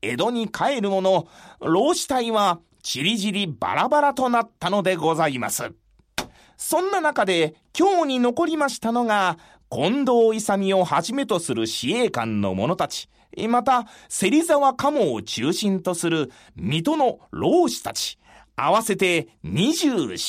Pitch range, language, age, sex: 195-305 Hz, Japanese, 30-49, male